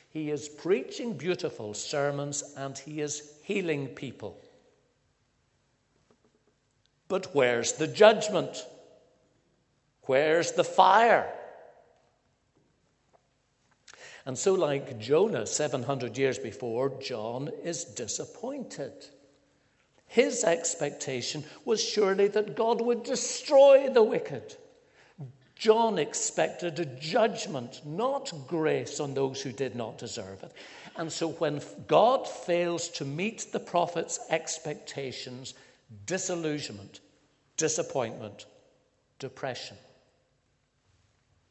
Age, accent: 60-79, British